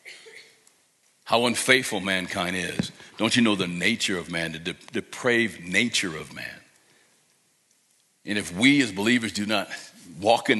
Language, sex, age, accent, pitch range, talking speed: English, male, 60-79, American, 90-115 Hz, 140 wpm